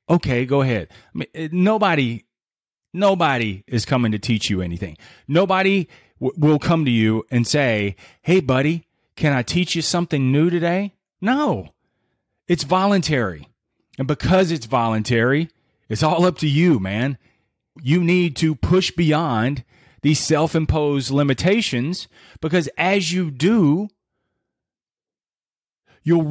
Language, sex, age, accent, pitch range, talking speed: English, male, 30-49, American, 125-170 Hz, 120 wpm